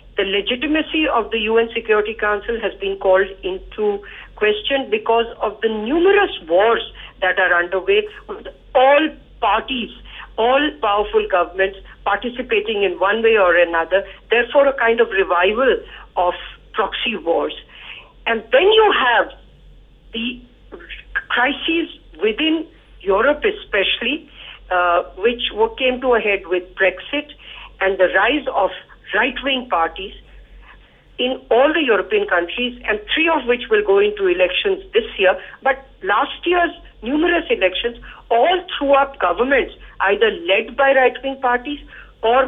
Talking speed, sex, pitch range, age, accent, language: 130 wpm, female, 205-320 Hz, 50-69, Indian, English